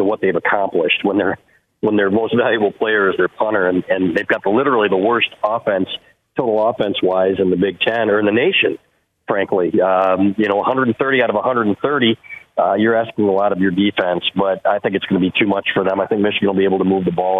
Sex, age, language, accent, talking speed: male, 40-59, English, American, 225 wpm